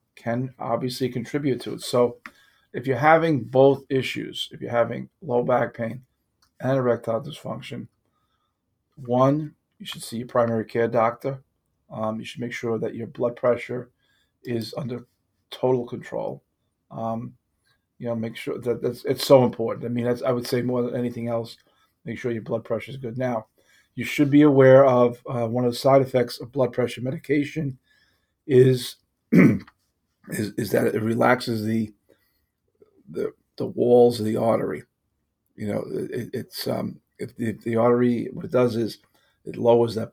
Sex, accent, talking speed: male, American, 170 wpm